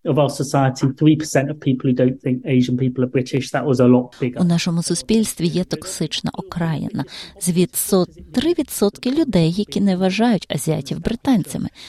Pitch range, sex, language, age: 160-225 Hz, female, Ukrainian, 30-49